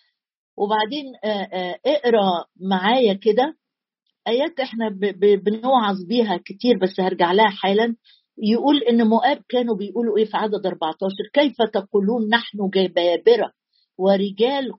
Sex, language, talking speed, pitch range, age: female, Arabic, 110 wpm, 190-245 Hz, 50-69